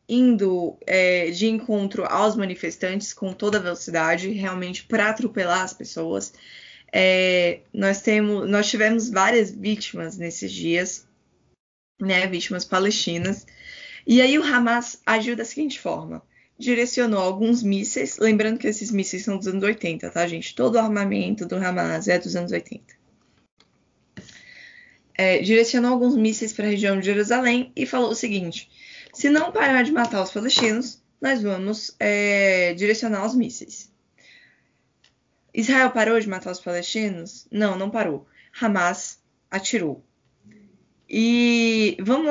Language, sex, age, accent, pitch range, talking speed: Portuguese, female, 20-39, Brazilian, 180-235 Hz, 135 wpm